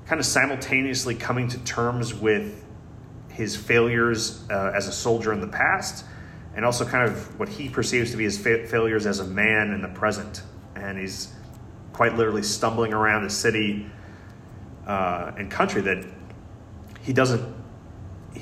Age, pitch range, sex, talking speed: 30-49, 100-115 Hz, male, 150 wpm